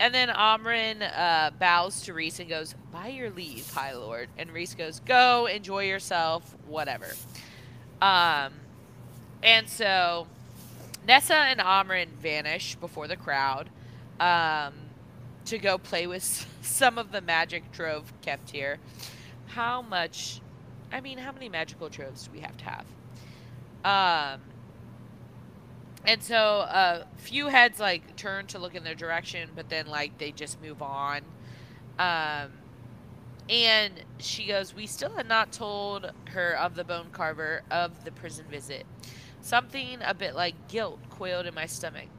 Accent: American